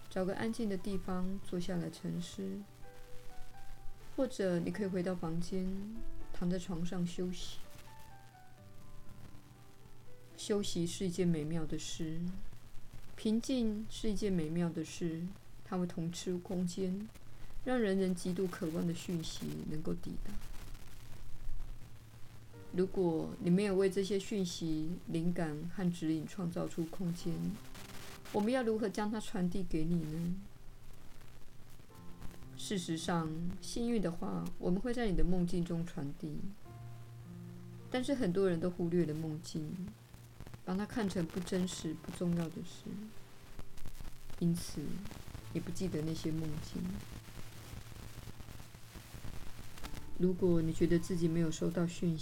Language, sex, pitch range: Chinese, female, 120-185 Hz